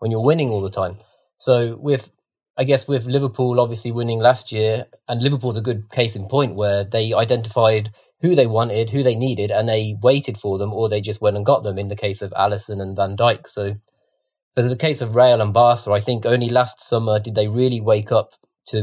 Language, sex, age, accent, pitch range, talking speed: English, male, 20-39, British, 105-125 Hz, 225 wpm